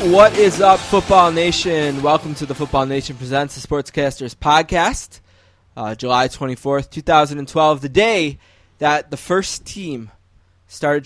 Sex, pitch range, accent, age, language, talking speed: male, 120-150 Hz, American, 20-39, English, 135 wpm